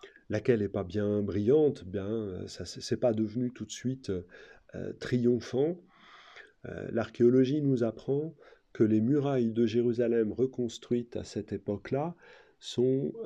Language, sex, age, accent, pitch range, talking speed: French, male, 40-59, French, 105-135 Hz, 130 wpm